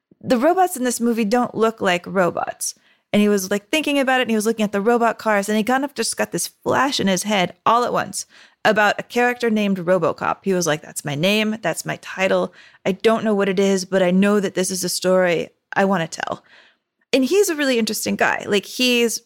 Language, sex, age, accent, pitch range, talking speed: English, female, 30-49, American, 190-230 Hz, 245 wpm